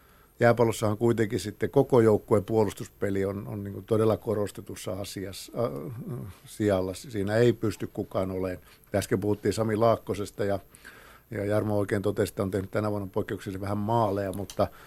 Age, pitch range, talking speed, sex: 50-69, 100-115 Hz, 145 wpm, male